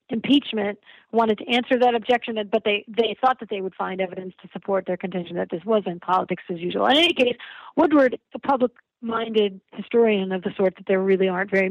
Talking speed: 205 wpm